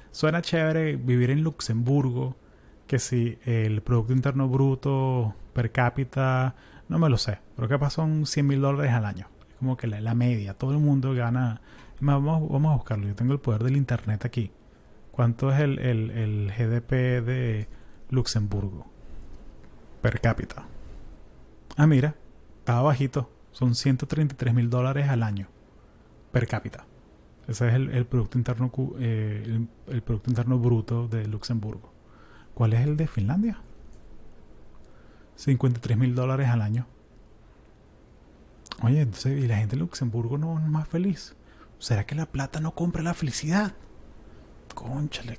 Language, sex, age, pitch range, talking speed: Spanish, male, 30-49, 115-135 Hz, 150 wpm